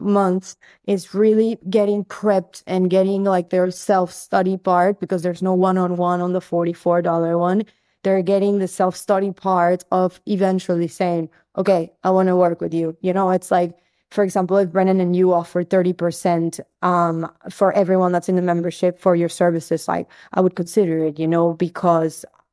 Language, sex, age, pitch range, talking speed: English, female, 20-39, 175-195 Hz, 170 wpm